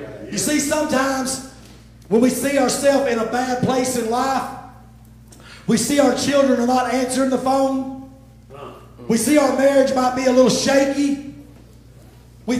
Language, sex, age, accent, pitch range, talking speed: English, male, 40-59, American, 210-265 Hz, 150 wpm